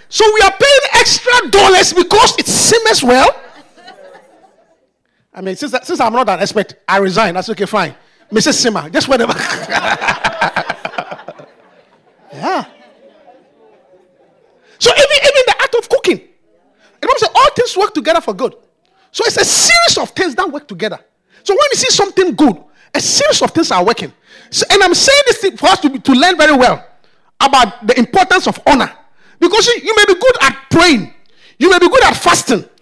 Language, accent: English, Nigerian